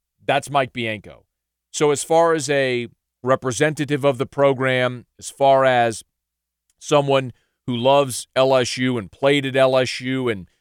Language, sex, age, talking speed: English, male, 40-59, 135 wpm